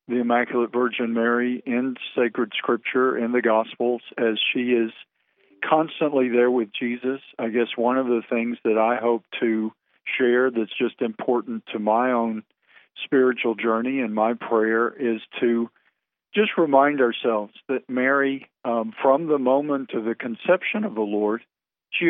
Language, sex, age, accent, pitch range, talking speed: English, male, 50-69, American, 115-135 Hz, 155 wpm